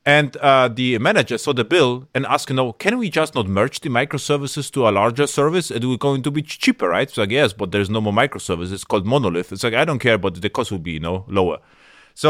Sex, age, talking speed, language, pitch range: male, 30-49, 280 wpm, English, 115-150 Hz